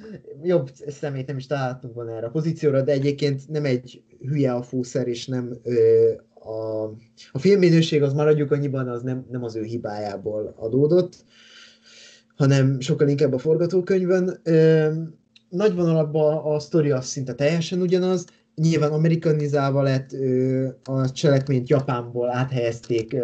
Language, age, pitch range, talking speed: Hungarian, 20-39, 125-150 Hz, 125 wpm